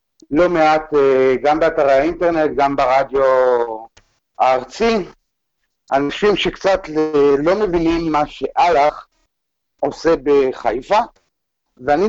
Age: 50-69